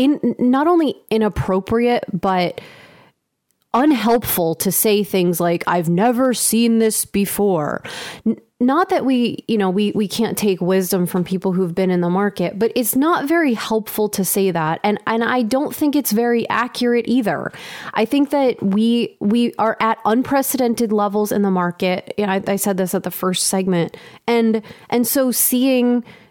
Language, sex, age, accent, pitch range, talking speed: English, female, 30-49, American, 195-235 Hz, 170 wpm